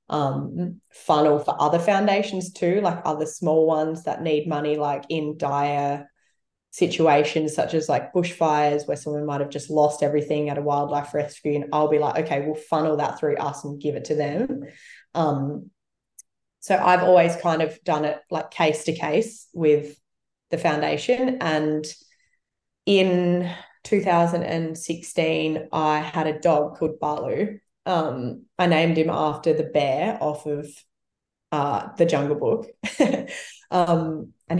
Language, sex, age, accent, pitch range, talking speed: English, female, 20-39, Australian, 150-170 Hz, 150 wpm